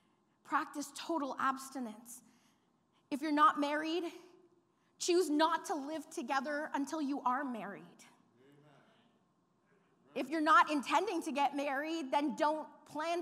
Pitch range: 265-340 Hz